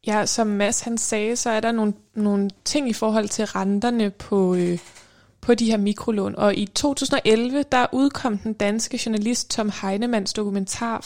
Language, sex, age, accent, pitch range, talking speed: Danish, female, 20-39, native, 205-240 Hz, 175 wpm